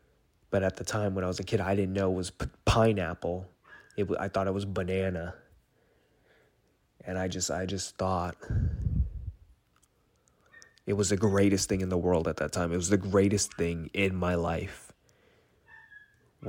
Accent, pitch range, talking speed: American, 90-100 Hz, 170 wpm